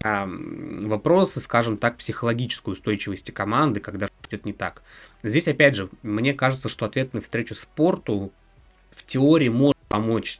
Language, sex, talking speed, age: Russian, male, 140 wpm, 20-39